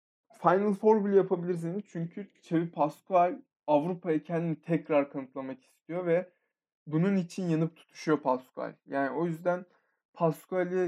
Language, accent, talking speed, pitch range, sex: Turkish, native, 125 wpm, 150-195 Hz, male